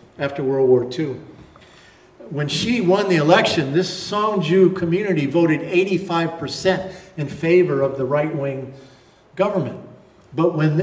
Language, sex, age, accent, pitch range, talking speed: English, male, 50-69, American, 160-195 Hz, 125 wpm